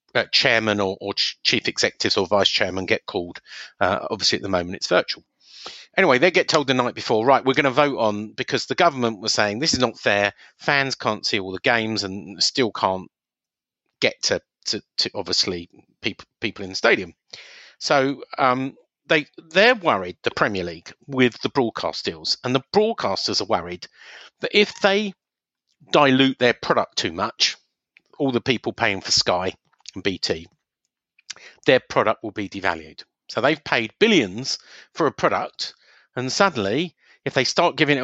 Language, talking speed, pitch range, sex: English, 175 wpm, 105-145 Hz, male